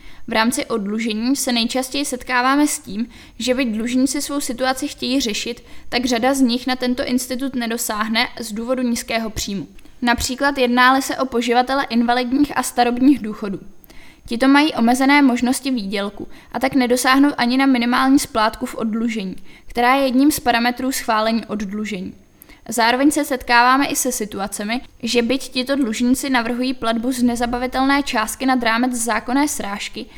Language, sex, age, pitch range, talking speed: Czech, female, 10-29, 230-265 Hz, 150 wpm